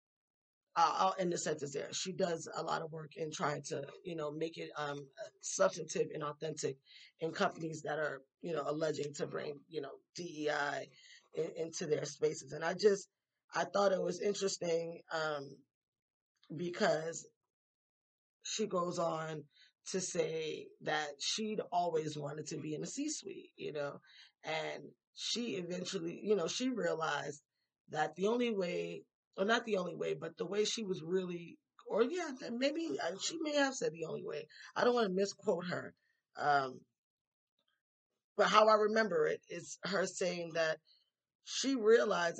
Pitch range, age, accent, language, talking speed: 160-220 Hz, 10-29, American, English, 160 wpm